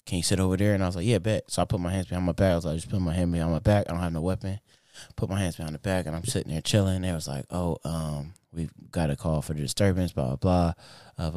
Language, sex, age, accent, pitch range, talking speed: English, male, 20-39, American, 75-95 Hz, 325 wpm